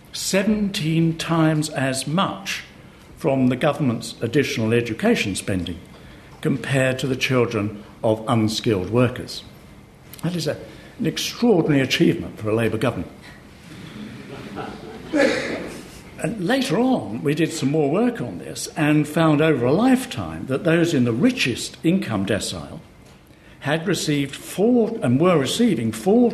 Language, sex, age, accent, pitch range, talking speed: English, male, 60-79, British, 115-160 Hz, 125 wpm